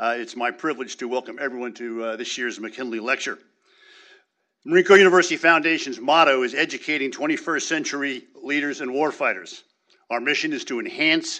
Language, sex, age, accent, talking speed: English, male, 50-69, American, 160 wpm